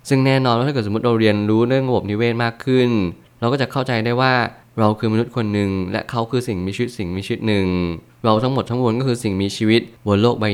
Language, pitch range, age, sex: Thai, 100-120 Hz, 20-39, male